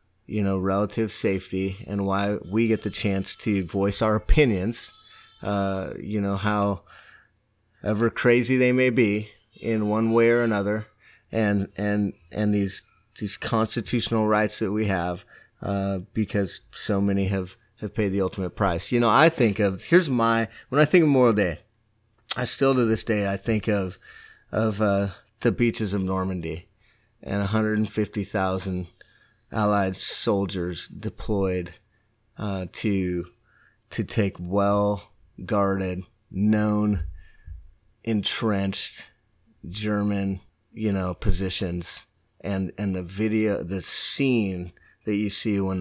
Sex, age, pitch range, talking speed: male, 30-49, 95-110 Hz, 135 wpm